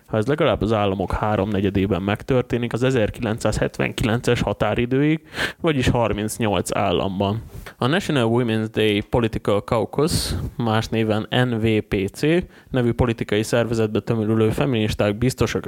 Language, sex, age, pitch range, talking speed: Hungarian, male, 20-39, 100-120 Hz, 105 wpm